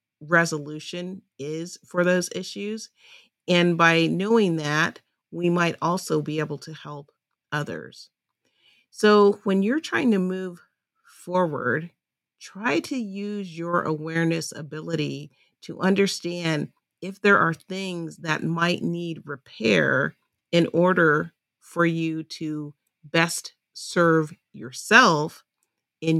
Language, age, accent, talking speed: English, 40-59, American, 110 wpm